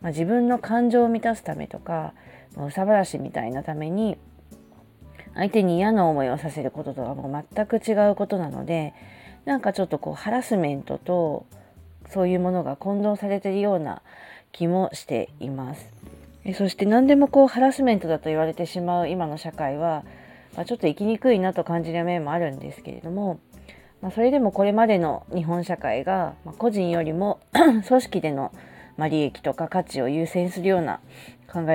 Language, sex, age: Japanese, female, 30-49